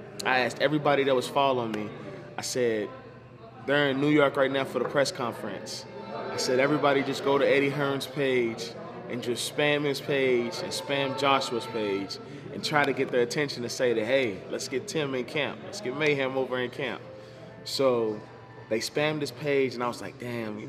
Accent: American